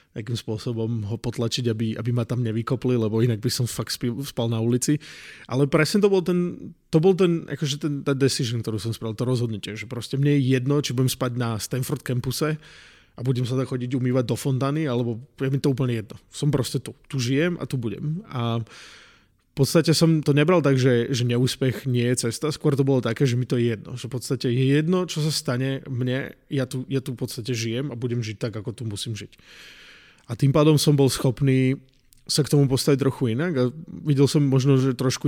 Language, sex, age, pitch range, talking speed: Slovak, male, 20-39, 120-145 Hz, 225 wpm